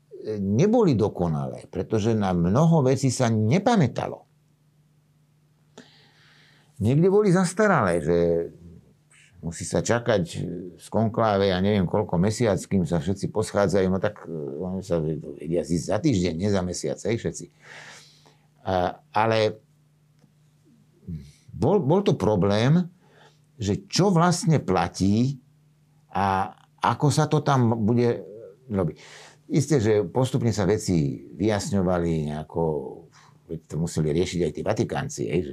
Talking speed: 110 wpm